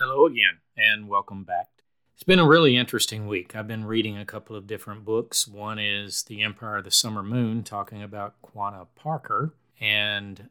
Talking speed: 185 wpm